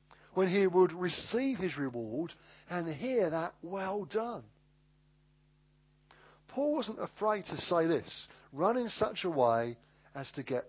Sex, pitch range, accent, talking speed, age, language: male, 145-205 Hz, British, 140 wpm, 50-69, English